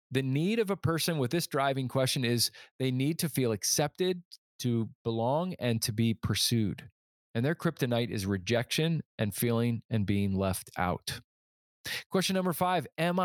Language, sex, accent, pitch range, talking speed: English, male, American, 115-155 Hz, 165 wpm